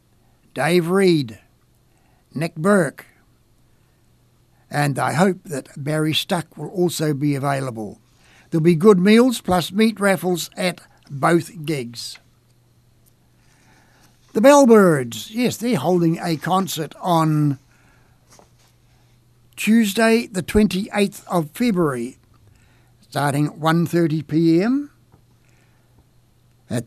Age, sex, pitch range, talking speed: 60-79, male, 125-190 Hz, 90 wpm